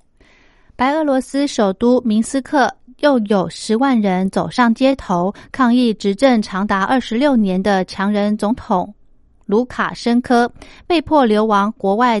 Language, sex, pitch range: Chinese, female, 200-255 Hz